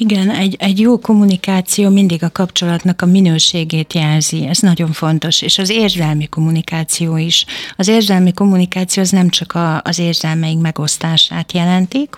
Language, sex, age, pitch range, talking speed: Hungarian, female, 60-79, 165-180 Hz, 150 wpm